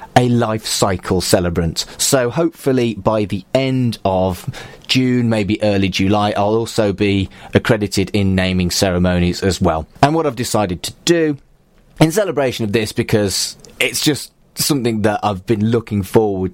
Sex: male